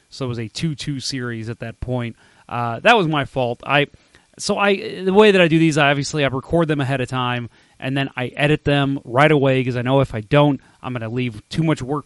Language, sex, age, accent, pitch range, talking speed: English, male, 30-49, American, 120-155 Hz, 250 wpm